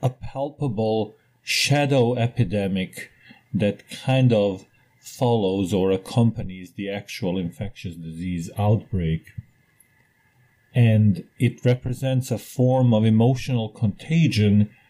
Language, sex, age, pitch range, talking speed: Portuguese, male, 40-59, 100-125 Hz, 95 wpm